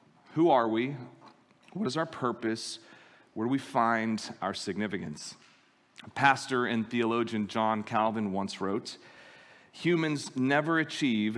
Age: 40-59